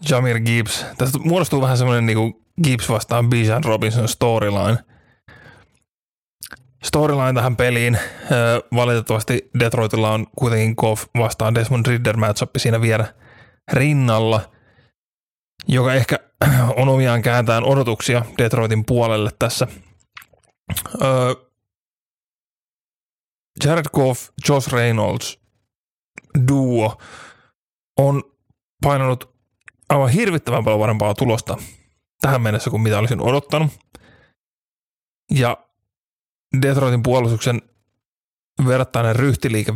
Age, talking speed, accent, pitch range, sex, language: 20-39, 90 wpm, native, 110-130 Hz, male, Finnish